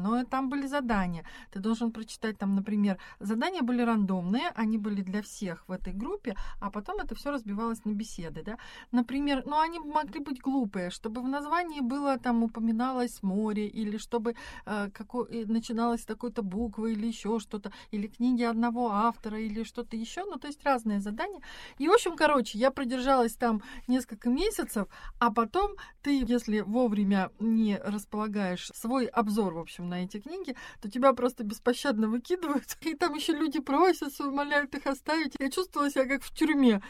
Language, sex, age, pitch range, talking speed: Russian, female, 40-59, 210-280 Hz, 170 wpm